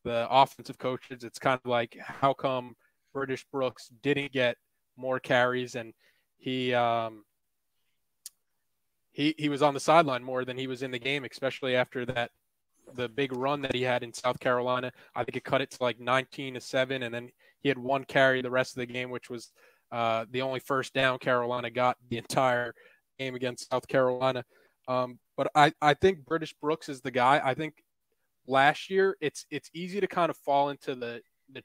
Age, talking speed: 20-39, 195 wpm